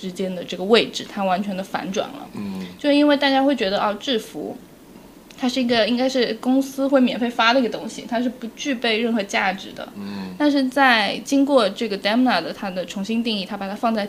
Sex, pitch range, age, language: female, 200-260 Hz, 10-29, Chinese